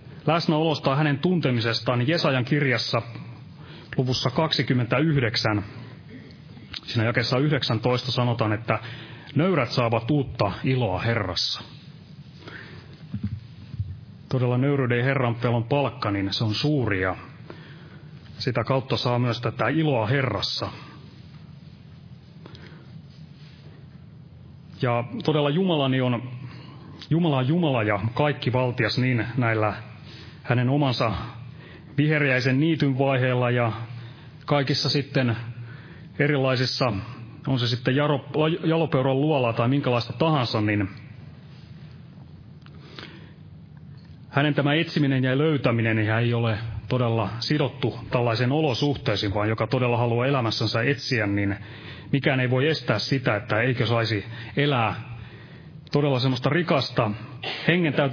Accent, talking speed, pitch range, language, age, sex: native, 100 wpm, 120-150 Hz, Finnish, 30-49, male